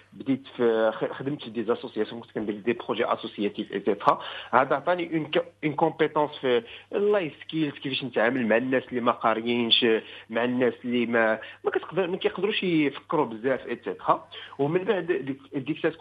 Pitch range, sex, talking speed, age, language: 125-175 Hz, male, 80 wpm, 50-69, English